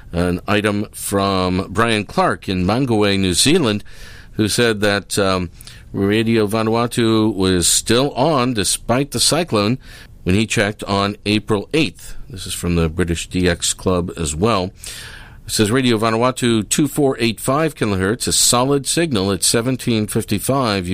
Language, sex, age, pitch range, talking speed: English, male, 50-69, 95-120 Hz, 135 wpm